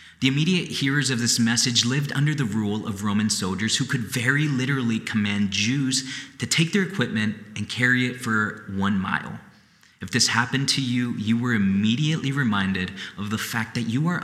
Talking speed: 185 wpm